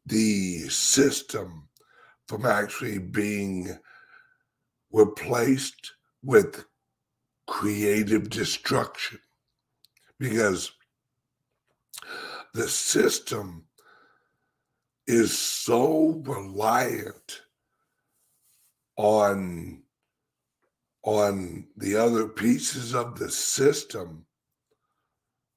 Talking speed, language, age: 55 wpm, English, 60-79